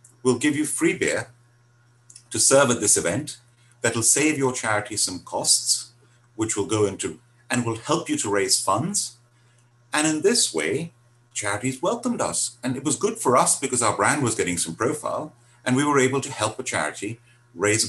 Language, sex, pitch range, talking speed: English, male, 115-140 Hz, 190 wpm